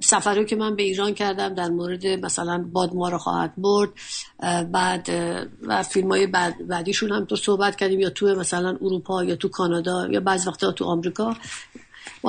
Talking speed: 170 wpm